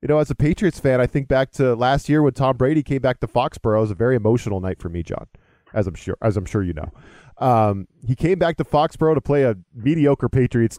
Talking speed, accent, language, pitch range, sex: 260 wpm, American, English, 115-175 Hz, male